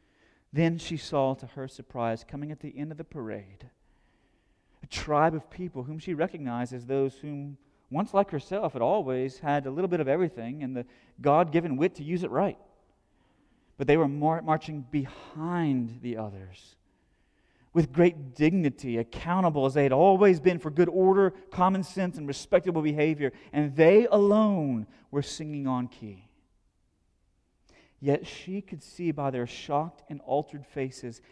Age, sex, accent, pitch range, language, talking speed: 30-49, male, American, 120-155 Hz, English, 160 wpm